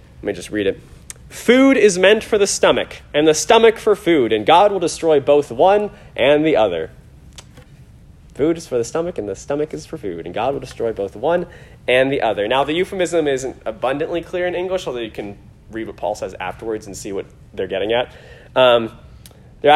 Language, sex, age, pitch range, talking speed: English, male, 30-49, 110-165 Hz, 210 wpm